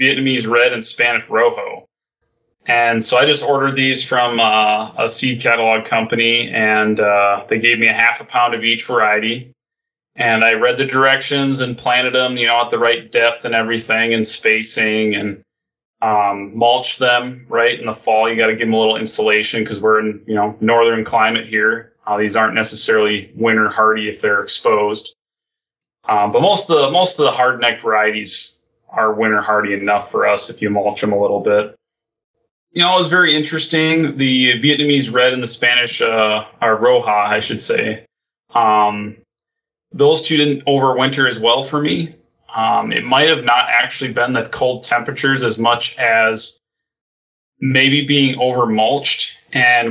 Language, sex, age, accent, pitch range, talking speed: English, male, 20-39, American, 110-135 Hz, 175 wpm